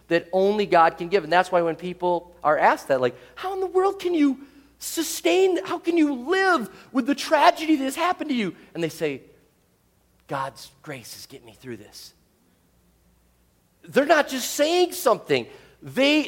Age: 40-59